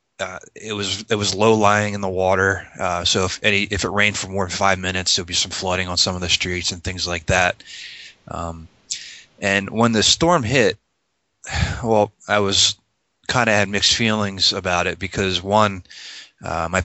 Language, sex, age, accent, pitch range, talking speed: English, male, 20-39, American, 90-105 Hz, 200 wpm